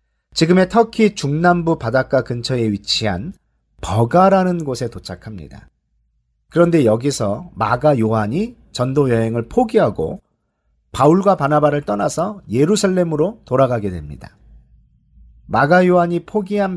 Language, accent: Korean, native